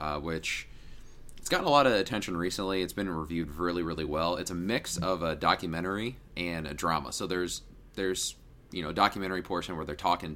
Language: English